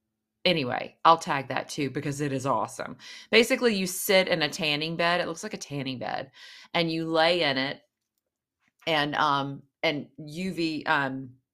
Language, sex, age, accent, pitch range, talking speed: English, female, 30-49, American, 140-190 Hz, 165 wpm